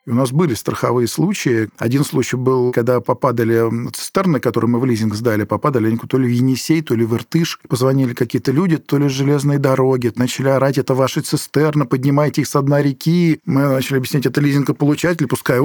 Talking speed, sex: 195 wpm, male